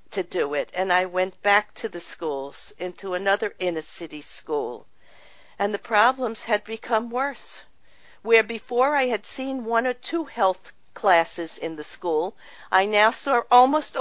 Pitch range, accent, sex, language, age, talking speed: 165-220 Hz, American, female, English, 50-69, 160 wpm